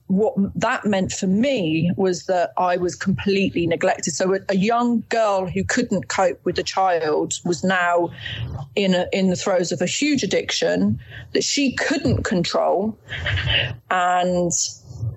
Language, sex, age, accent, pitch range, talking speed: English, female, 30-49, British, 175-210 Hz, 150 wpm